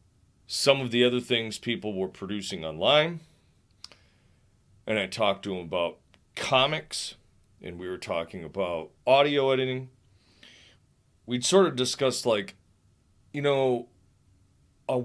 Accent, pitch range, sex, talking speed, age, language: American, 95-125 Hz, male, 125 wpm, 40-59, English